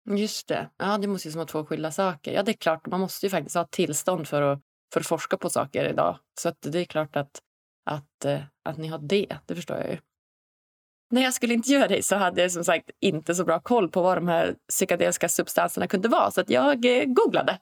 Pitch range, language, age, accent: 170-225 Hz, Swedish, 20-39, native